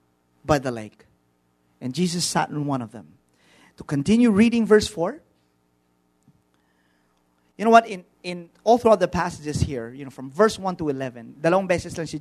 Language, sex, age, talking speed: English, male, 40-59, 170 wpm